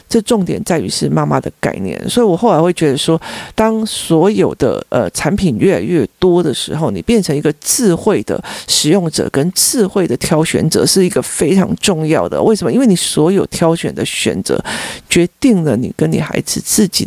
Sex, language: male, Chinese